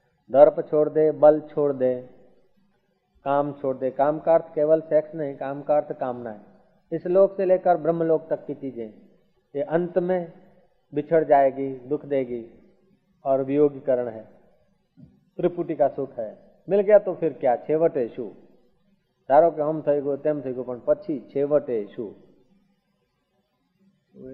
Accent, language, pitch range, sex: native, Hindi, 145-190 Hz, male